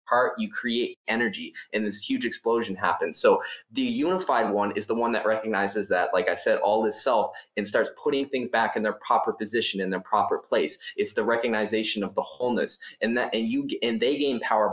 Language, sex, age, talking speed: English, male, 20-39, 210 wpm